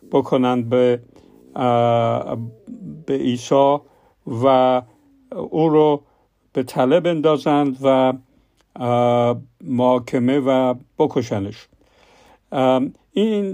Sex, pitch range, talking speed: male, 125-155 Hz, 65 wpm